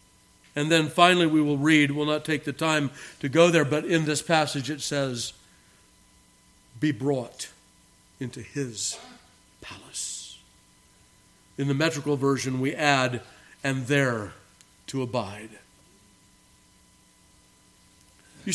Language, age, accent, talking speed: English, 50-69, American, 115 wpm